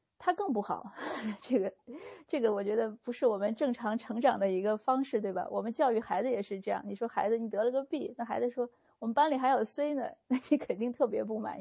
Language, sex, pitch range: Chinese, female, 200-240 Hz